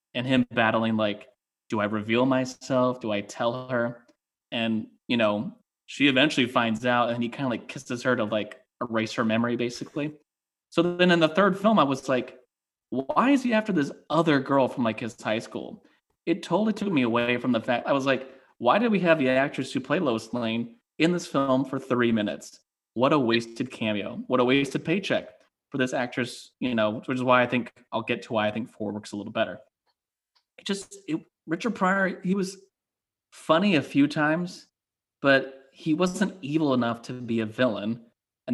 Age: 20-39